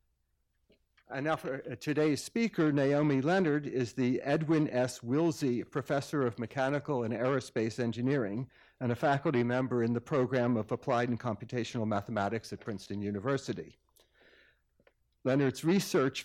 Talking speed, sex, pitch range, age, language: 130 wpm, male, 115-140 Hz, 60-79, English